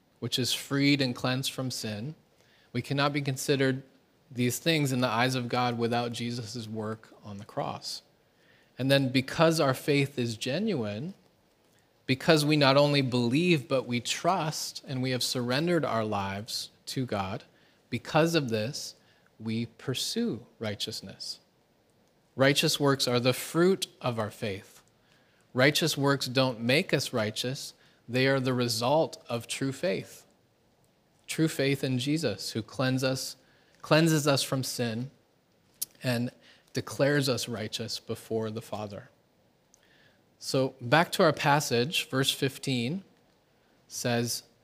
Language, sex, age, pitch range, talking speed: English, male, 30-49, 120-145 Hz, 135 wpm